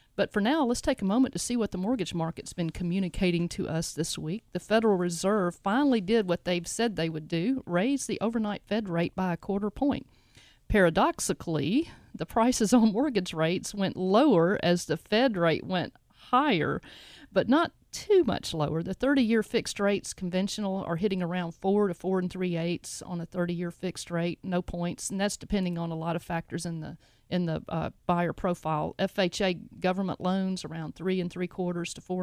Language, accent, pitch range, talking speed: English, American, 170-200 Hz, 190 wpm